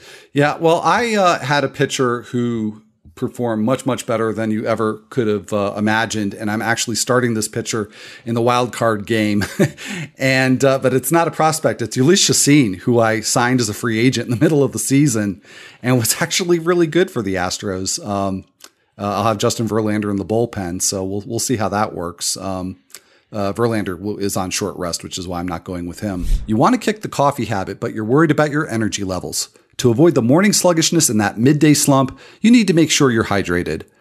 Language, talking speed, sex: English, 215 wpm, male